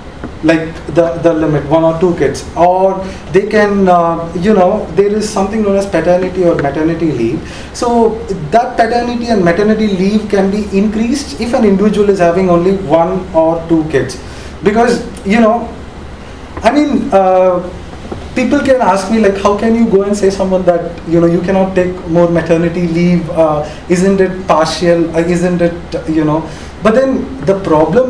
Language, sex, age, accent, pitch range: Korean, male, 30-49, Indian, 170-210 Hz